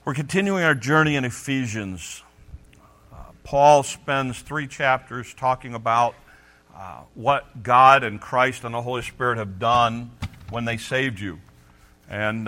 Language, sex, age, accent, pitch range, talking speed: English, male, 50-69, American, 105-130 Hz, 140 wpm